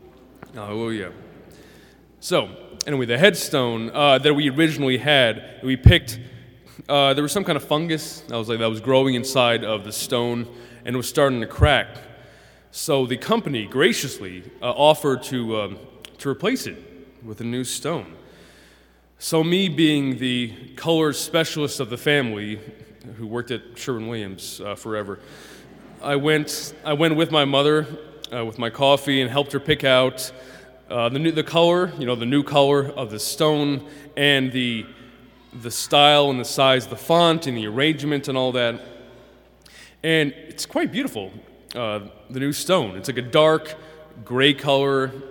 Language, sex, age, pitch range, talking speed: English, male, 20-39, 120-145 Hz, 165 wpm